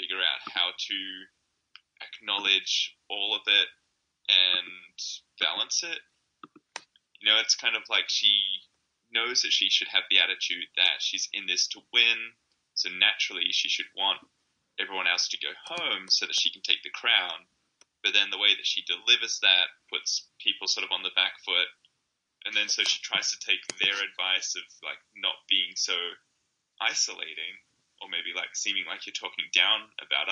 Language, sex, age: English, male, 10-29